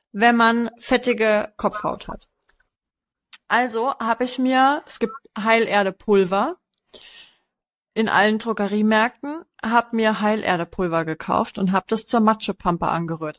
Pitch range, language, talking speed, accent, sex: 195-240 Hz, German, 110 wpm, German, female